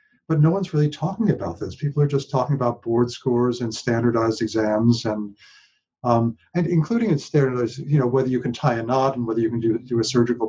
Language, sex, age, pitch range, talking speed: English, male, 50-69, 110-140 Hz, 230 wpm